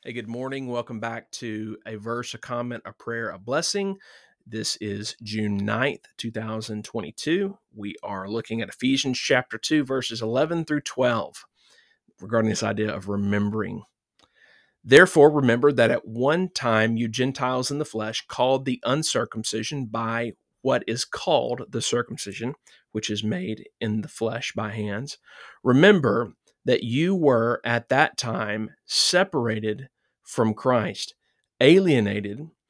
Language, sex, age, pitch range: English, male, 40-59, 110-135 Hz